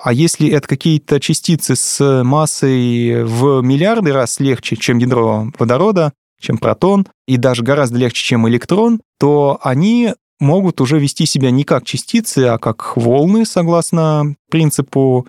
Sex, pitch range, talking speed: male, 120-155 Hz, 140 wpm